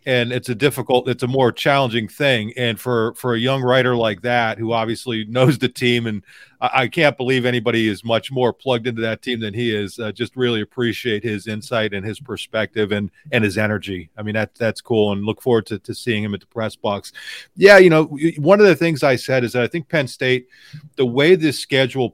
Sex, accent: male, American